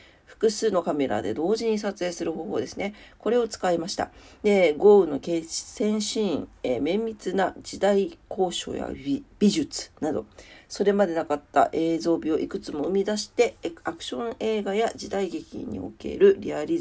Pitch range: 150-225 Hz